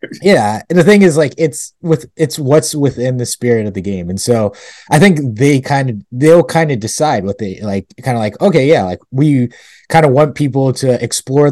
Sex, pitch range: male, 110-145 Hz